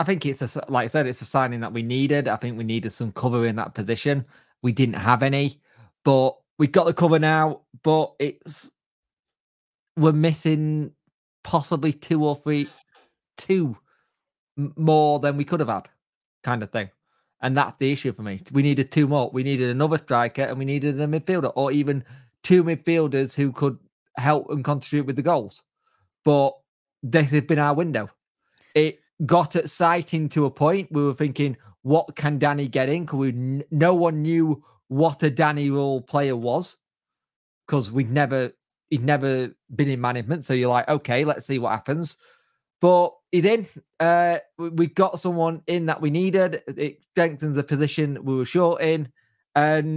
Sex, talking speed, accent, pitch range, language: male, 180 wpm, British, 130-160 Hz, English